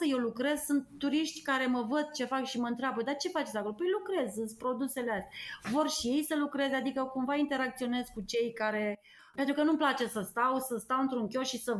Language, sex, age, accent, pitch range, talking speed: Romanian, female, 30-49, native, 220-290 Hz, 220 wpm